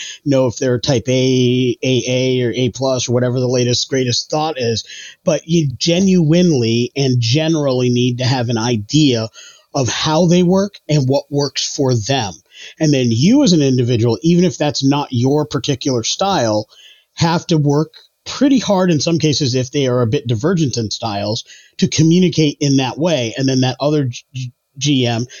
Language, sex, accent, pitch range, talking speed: English, male, American, 125-155 Hz, 175 wpm